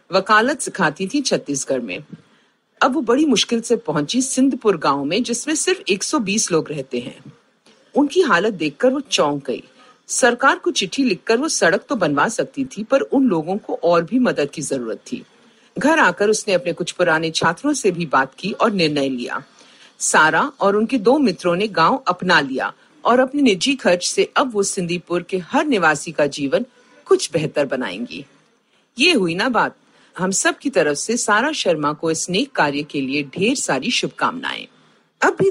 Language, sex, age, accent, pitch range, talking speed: Hindi, female, 50-69, native, 170-270 Hz, 180 wpm